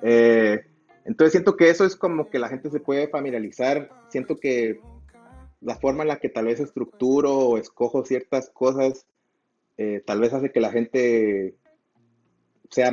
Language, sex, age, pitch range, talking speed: Spanish, male, 30-49, 115-155 Hz, 160 wpm